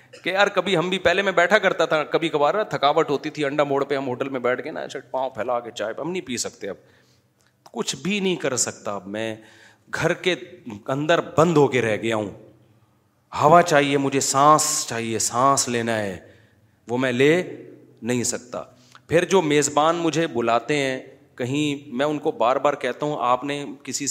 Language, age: Urdu, 40-59